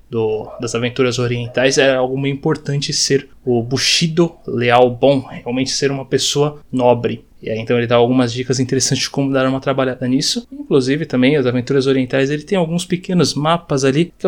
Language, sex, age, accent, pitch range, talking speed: Portuguese, male, 20-39, Brazilian, 130-160 Hz, 180 wpm